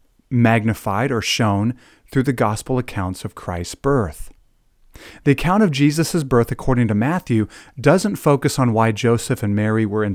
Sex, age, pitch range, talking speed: male, 40-59, 110-155 Hz, 160 wpm